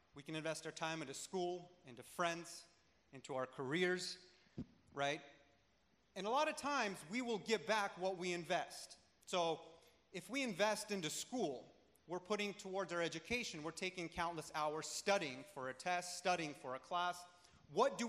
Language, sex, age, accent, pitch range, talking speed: English, male, 30-49, American, 160-210 Hz, 165 wpm